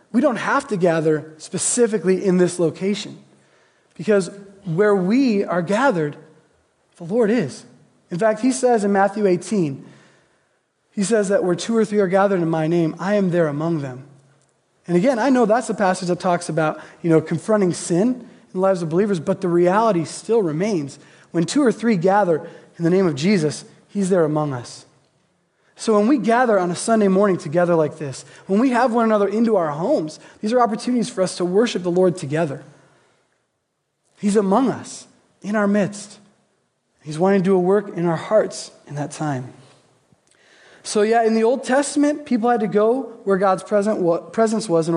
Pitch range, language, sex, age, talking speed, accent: 165-215 Hz, English, male, 20-39, 190 wpm, American